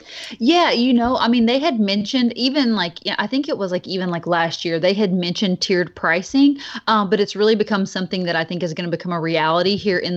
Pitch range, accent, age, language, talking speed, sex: 170-220 Hz, American, 30-49, English, 240 wpm, female